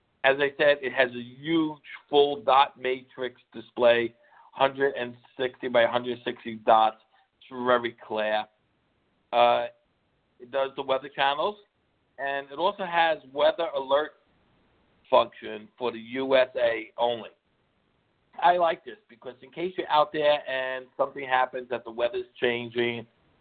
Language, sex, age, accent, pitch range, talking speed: English, male, 60-79, American, 120-140 Hz, 130 wpm